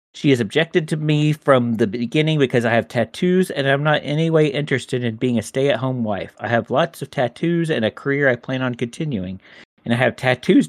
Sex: male